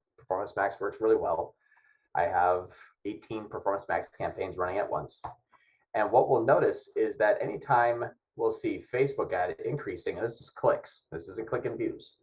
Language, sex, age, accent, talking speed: English, male, 30-49, American, 175 wpm